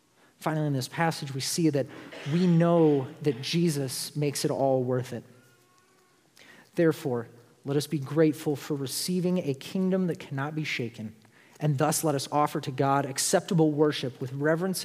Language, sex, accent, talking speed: English, male, American, 160 wpm